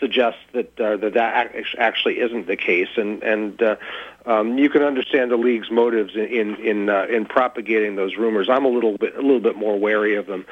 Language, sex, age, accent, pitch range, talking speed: English, male, 40-59, American, 110-140 Hz, 210 wpm